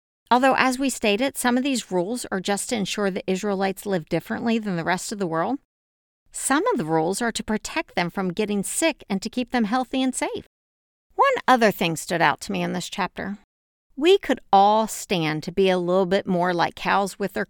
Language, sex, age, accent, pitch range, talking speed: English, female, 50-69, American, 175-235 Hz, 220 wpm